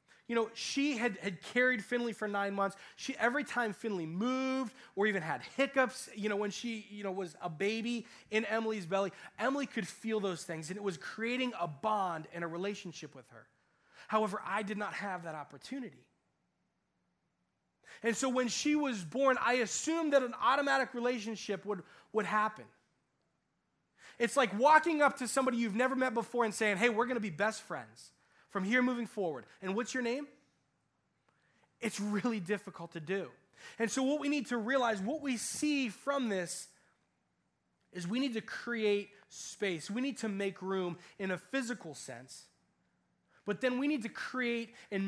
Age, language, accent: 20-39, English, American